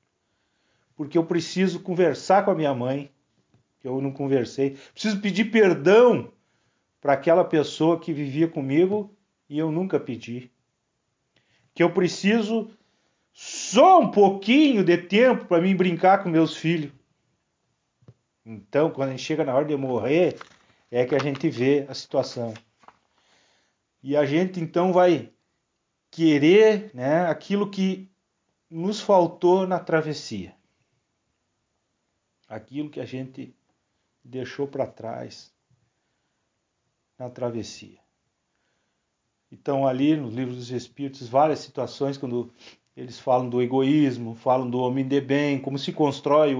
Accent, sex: Brazilian, male